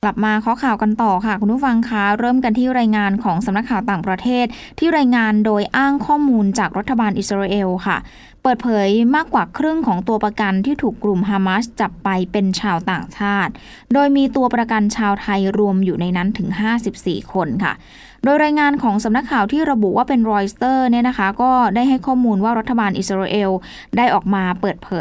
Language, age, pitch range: Thai, 10-29, 195-250 Hz